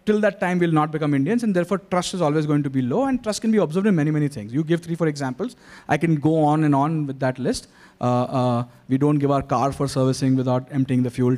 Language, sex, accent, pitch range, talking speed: English, male, Indian, 130-185 Hz, 280 wpm